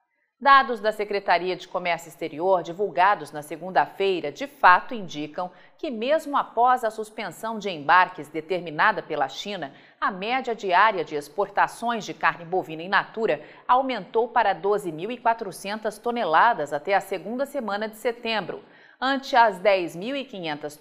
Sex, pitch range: female, 180-245 Hz